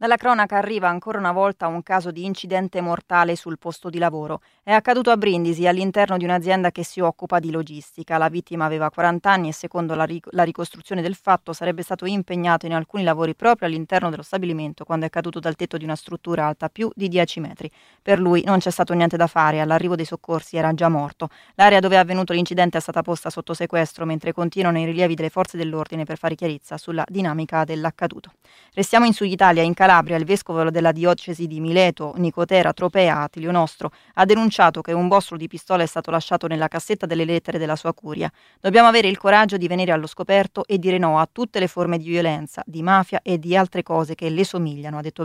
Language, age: Italian, 20-39